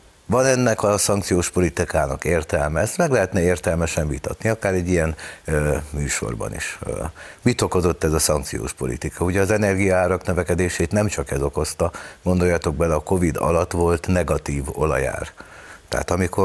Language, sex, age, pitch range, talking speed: Hungarian, male, 60-79, 80-95 Hz, 145 wpm